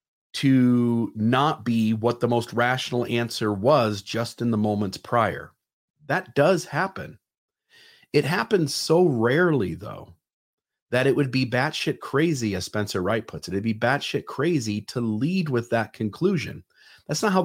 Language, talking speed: English, 155 wpm